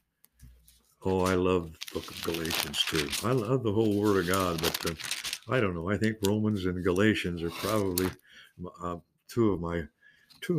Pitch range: 95-125 Hz